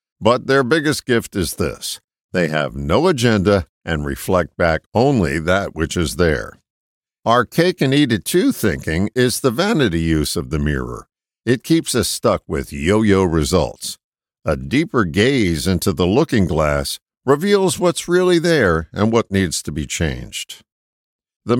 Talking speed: 160 wpm